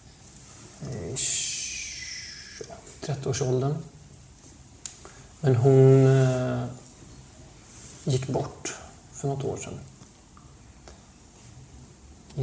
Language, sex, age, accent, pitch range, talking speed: Swedish, male, 30-49, native, 120-135 Hz, 50 wpm